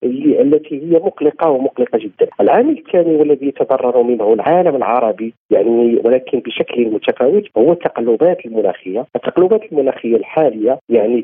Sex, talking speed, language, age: male, 130 wpm, Arabic, 50-69